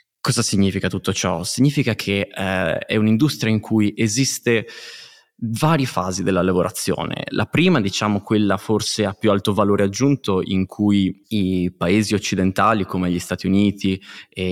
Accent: native